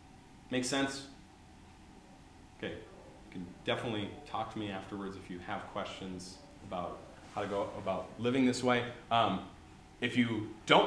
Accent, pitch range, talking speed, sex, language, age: American, 105-135 Hz, 145 wpm, male, English, 30-49